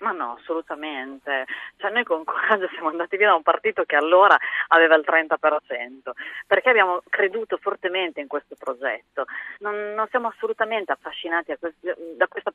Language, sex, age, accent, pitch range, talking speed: Italian, female, 30-49, native, 160-220 Hz, 160 wpm